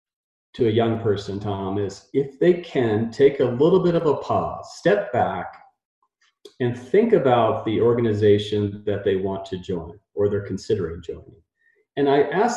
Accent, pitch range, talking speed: American, 105-150 Hz, 165 wpm